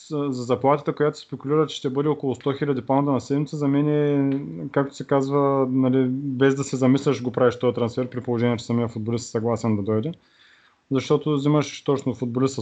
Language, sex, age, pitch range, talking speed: Bulgarian, male, 30-49, 125-145 Hz, 195 wpm